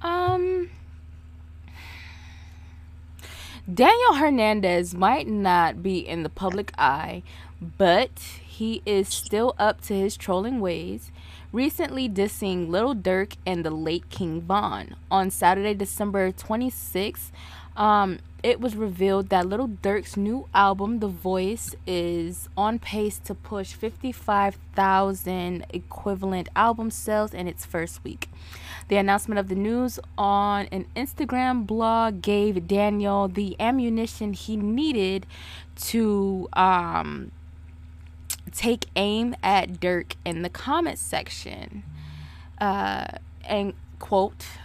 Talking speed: 110 wpm